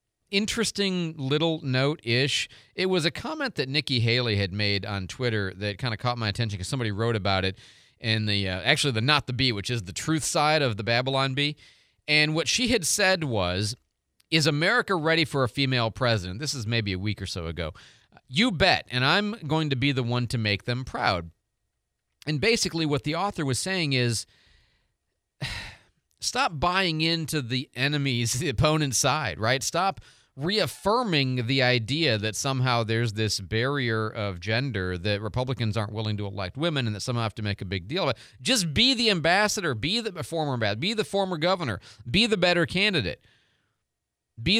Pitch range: 110-160 Hz